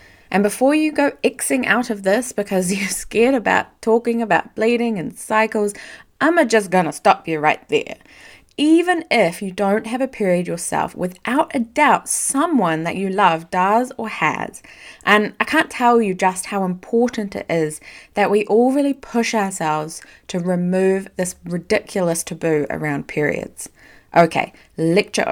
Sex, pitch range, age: female, 170-240 Hz, 20-39